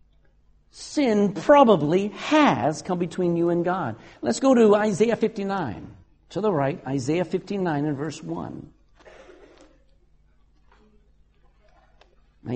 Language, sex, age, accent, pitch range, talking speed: English, male, 60-79, American, 140-220 Hz, 115 wpm